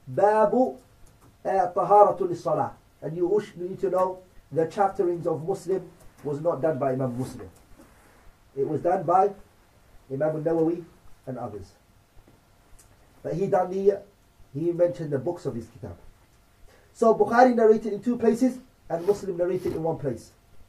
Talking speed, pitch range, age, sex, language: 135 wpm, 110-185 Hz, 30-49, male, English